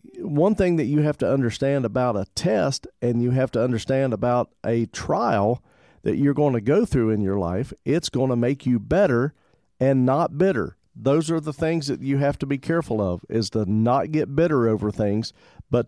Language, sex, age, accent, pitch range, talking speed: English, male, 40-59, American, 115-150 Hz, 210 wpm